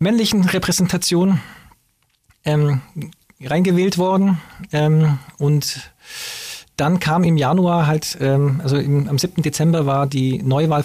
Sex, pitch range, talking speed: male, 140-165 Hz, 110 wpm